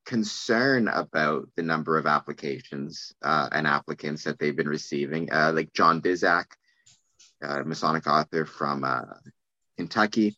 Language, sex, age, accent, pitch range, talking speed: English, male, 30-49, American, 80-105 Hz, 140 wpm